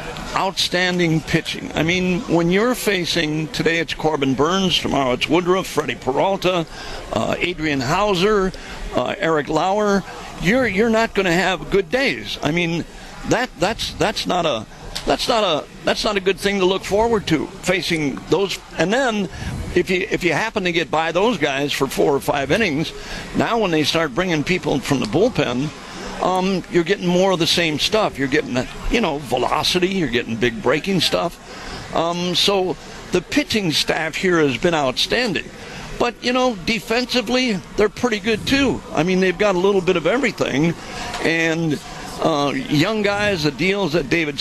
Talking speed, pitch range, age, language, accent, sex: 175 wpm, 150-195 Hz, 60-79, English, American, male